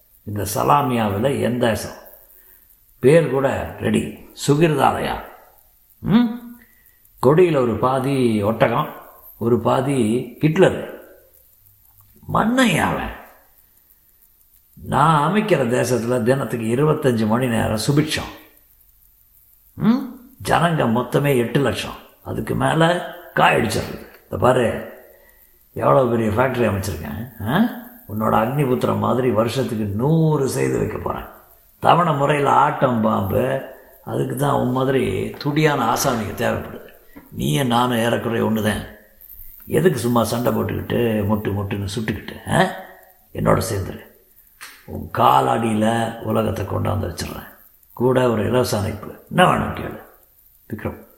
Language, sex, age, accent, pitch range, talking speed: Tamil, male, 50-69, native, 110-140 Hz, 95 wpm